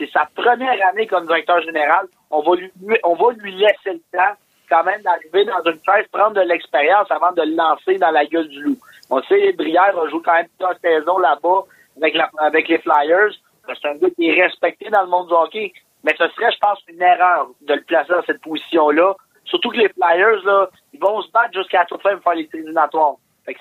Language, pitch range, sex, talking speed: French, 165-215 Hz, male, 230 wpm